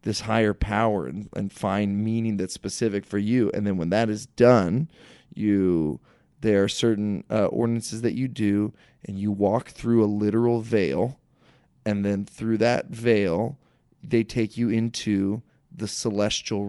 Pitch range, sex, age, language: 100-110 Hz, male, 20-39, English